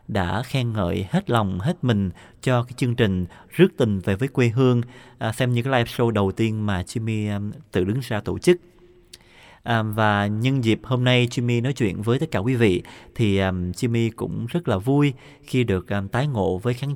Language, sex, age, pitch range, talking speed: Vietnamese, male, 20-39, 100-125 Hz, 200 wpm